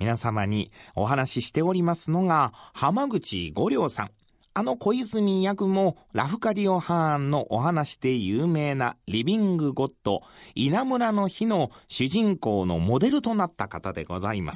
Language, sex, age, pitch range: Japanese, male, 40-59, 125-200 Hz